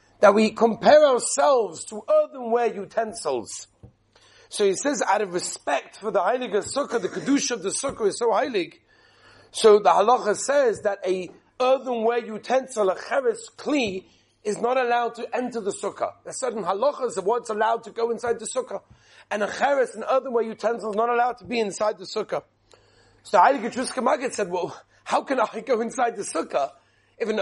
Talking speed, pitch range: 180 wpm, 185-250 Hz